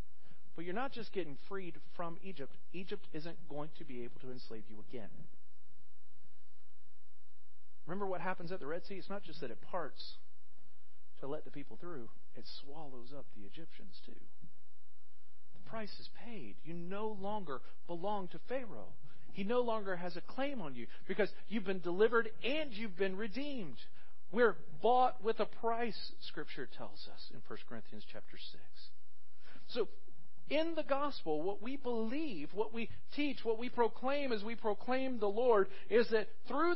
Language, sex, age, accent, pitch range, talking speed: English, male, 40-59, American, 165-245 Hz, 165 wpm